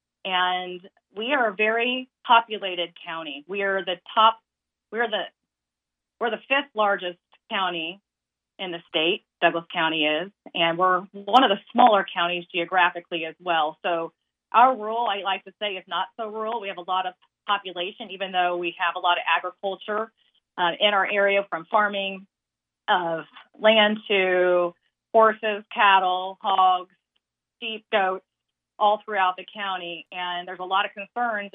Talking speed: 160 wpm